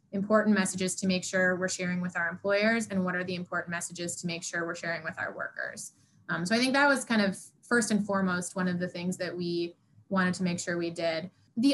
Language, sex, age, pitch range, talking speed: English, female, 20-39, 185-220 Hz, 245 wpm